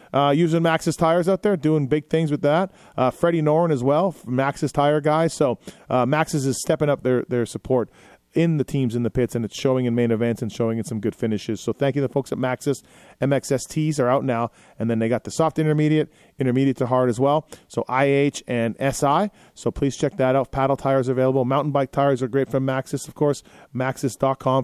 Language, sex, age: English, male, 40-59